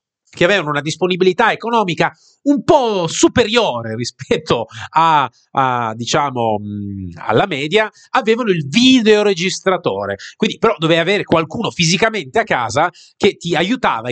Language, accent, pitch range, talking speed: Italian, native, 125-185 Hz, 120 wpm